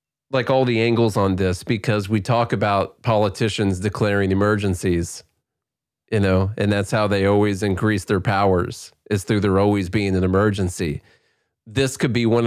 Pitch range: 100-125 Hz